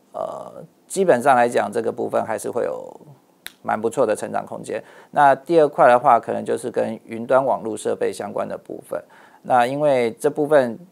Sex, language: male, Chinese